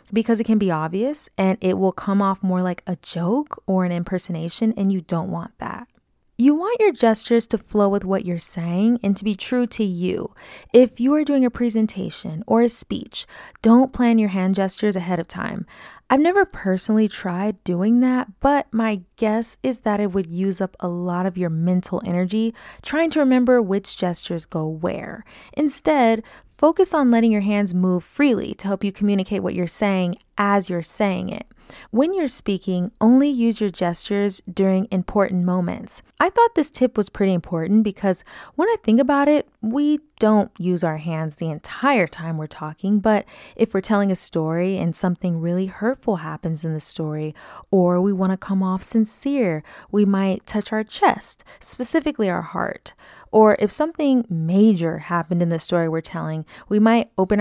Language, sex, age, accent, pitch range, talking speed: English, female, 20-39, American, 180-230 Hz, 185 wpm